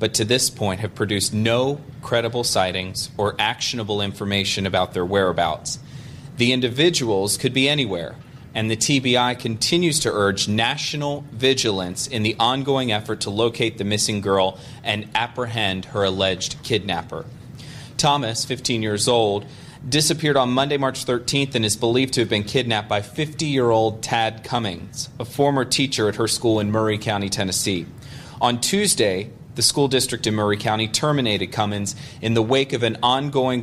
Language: English